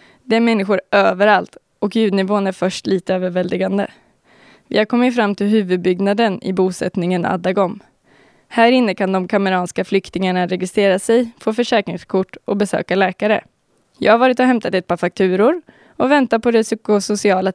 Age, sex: 20-39, female